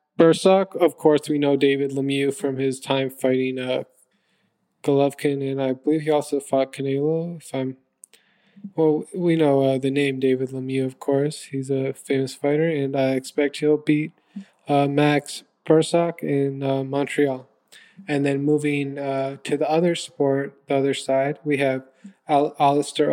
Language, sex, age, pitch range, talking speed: English, male, 20-39, 140-160 Hz, 160 wpm